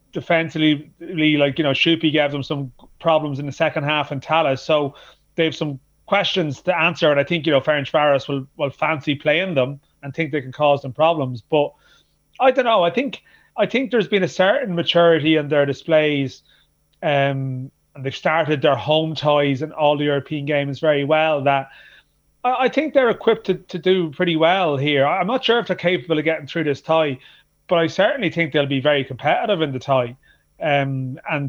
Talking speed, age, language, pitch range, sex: 210 wpm, 30-49, English, 140-165 Hz, male